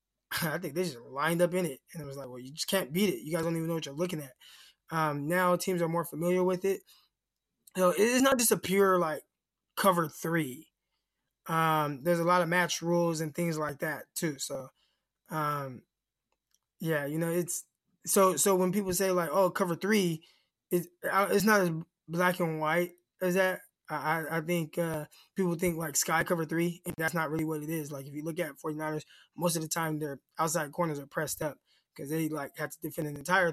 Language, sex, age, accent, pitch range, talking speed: English, male, 20-39, American, 155-185 Hz, 220 wpm